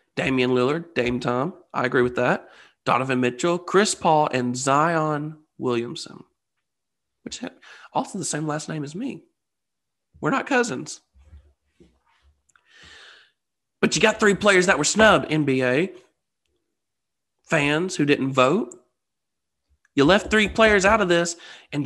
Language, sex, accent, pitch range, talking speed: English, male, American, 125-175 Hz, 130 wpm